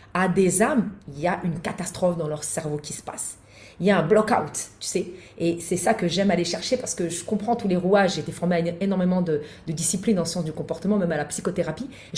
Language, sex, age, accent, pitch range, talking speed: French, female, 30-49, French, 160-210 Hz, 275 wpm